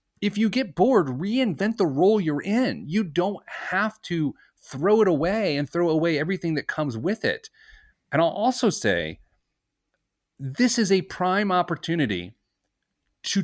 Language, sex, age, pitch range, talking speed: English, male, 30-49, 140-190 Hz, 150 wpm